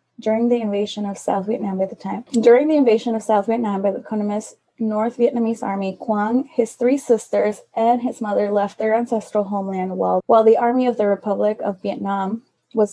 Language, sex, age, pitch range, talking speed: English, female, 20-39, 195-235 Hz, 195 wpm